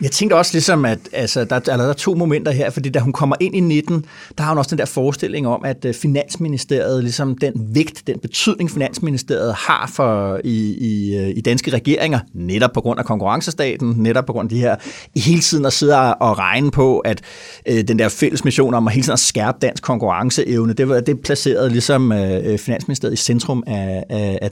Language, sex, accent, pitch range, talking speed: Danish, male, native, 115-150 Hz, 185 wpm